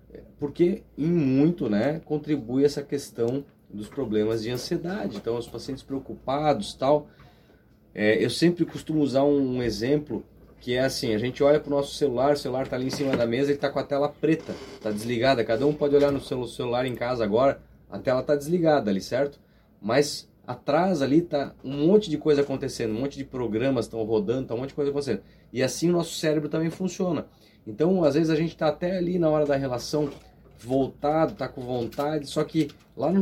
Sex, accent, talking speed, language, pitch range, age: male, Brazilian, 205 wpm, Portuguese, 115-150 Hz, 30-49